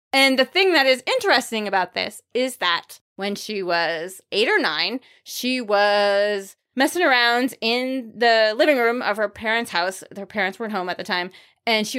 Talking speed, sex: 185 wpm, female